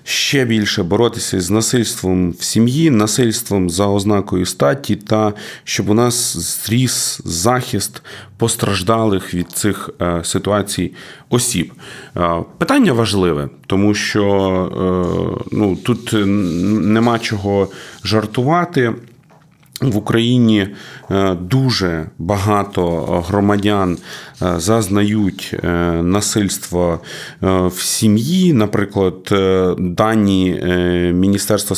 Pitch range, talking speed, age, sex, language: 95-115 Hz, 80 wpm, 30-49, male, Ukrainian